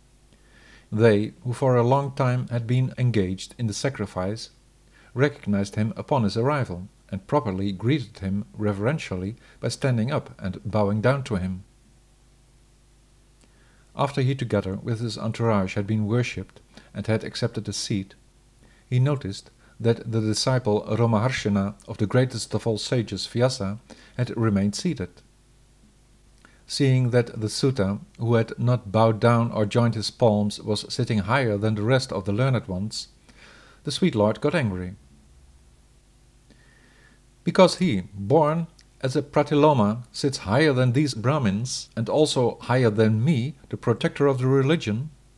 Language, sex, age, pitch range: English, male, 50-69, 105-130 Hz